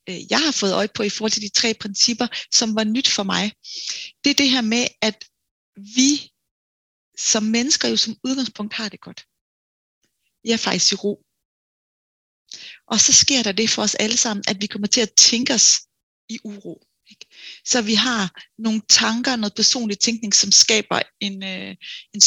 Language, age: Danish, 30-49